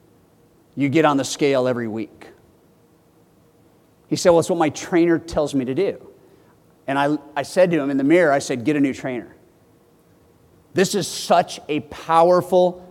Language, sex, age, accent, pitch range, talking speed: English, male, 50-69, American, 165-220 Hz, 175 wpm